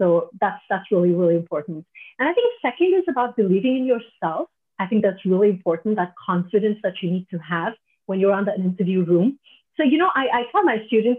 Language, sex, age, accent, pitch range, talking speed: English, female, 30-49, Indian, 180-235 Hz, 220 wpm